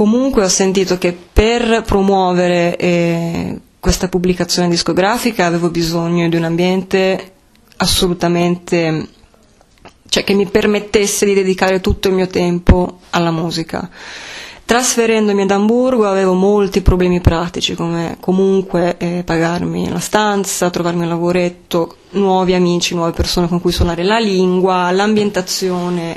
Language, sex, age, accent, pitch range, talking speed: Italian, female, 20-39, native, 175-200 Hz, 125 wpm